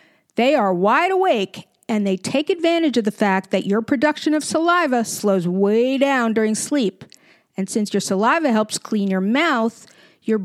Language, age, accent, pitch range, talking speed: English, 50-69, American, 210-285 Hz, 170 wpm